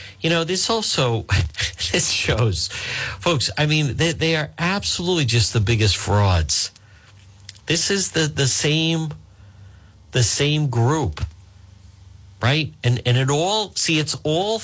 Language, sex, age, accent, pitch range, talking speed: English, male, 50-69, American, 95-120 Hz, 135 wpm